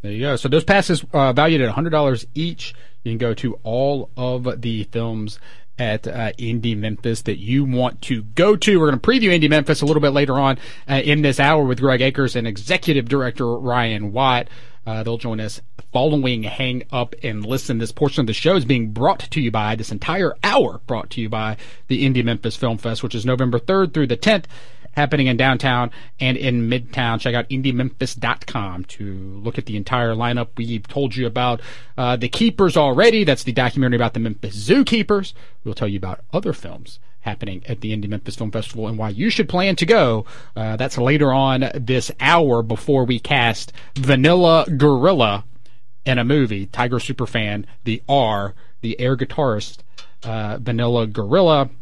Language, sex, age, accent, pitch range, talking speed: English, male, 40-59, American, 115-140 Hz, 190 wpm